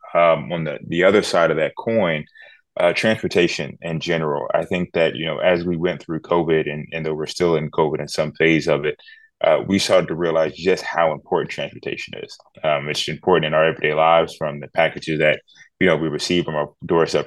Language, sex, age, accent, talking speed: English, male, 20-39, American, 220 wpm